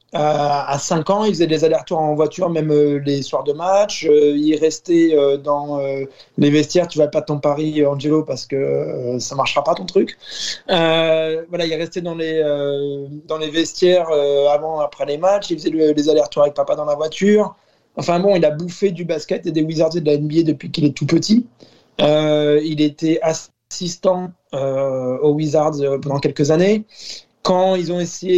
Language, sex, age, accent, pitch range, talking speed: French, male, 20-39, French, 145-170 Hz, 200 wpm